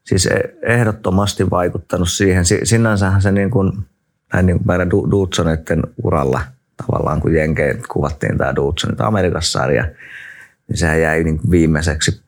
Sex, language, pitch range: male, Finnish, 80-105 Hz